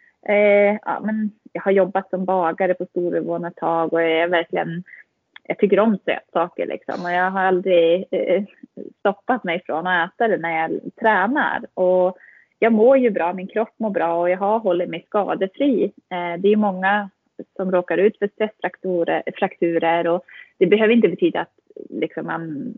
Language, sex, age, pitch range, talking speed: Swedish, female, 20-39, 175-225 Hz, 175 wpm